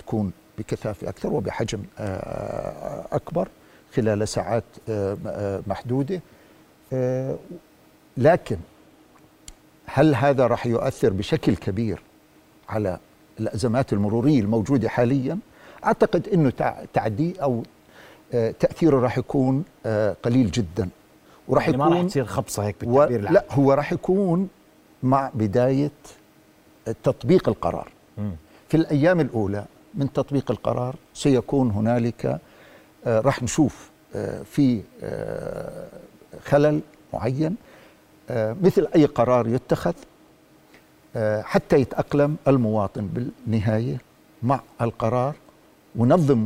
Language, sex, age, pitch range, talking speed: Arabic, male, 50-69, 115-150 Hz, 90 wpm